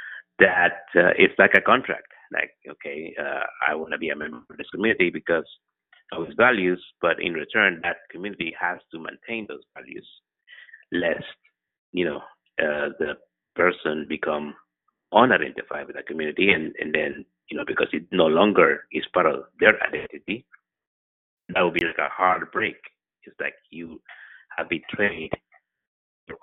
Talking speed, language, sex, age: 160 wpm, English, male, 50-69